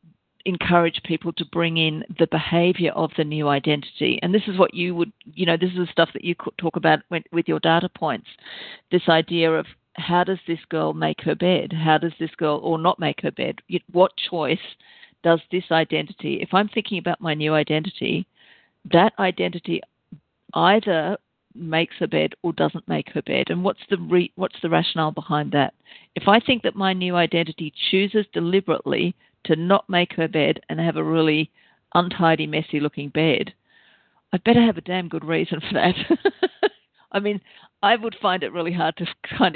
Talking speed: 185 wpm